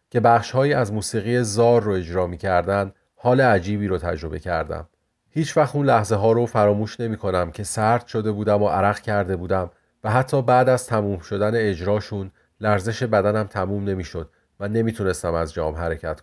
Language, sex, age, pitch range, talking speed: Persian, male, 40-59, 95-115 Hz, 165 wpm